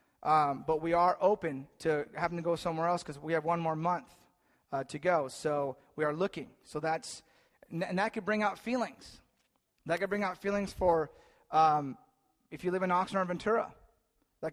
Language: English